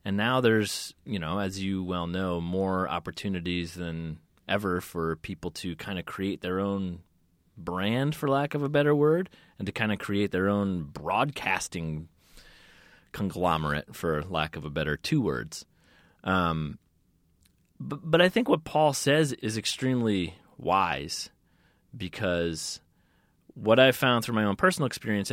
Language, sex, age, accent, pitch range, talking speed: English, male, 30-49, American, 85-110 Hz, 150 wpm